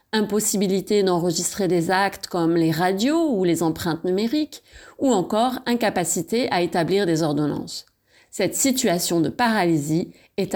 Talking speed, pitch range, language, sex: 130 wpm, 170-245 Hz, French, female